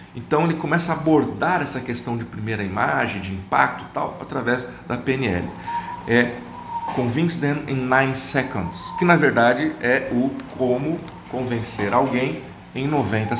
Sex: male